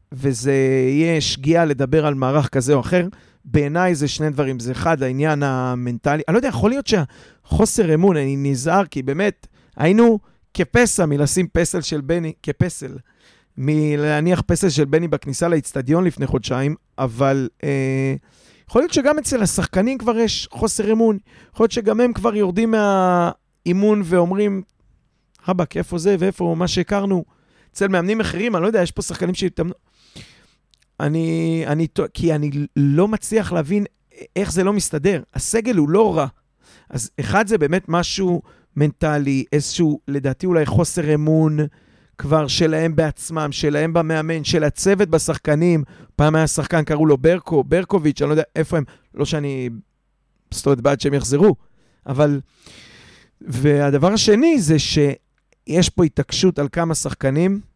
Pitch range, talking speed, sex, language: 145-185 Hz, 145 wpm, male, Hebrew